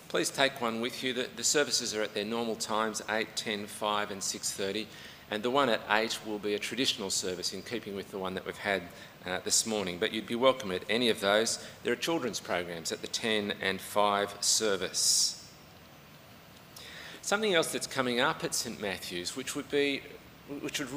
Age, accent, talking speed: 40-59, Australian, 195 wpm